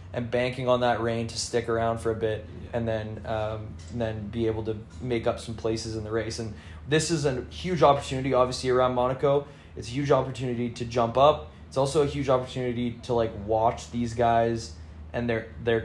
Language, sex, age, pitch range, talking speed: English, male, 20-39, 110-125 Hz, 210 wpm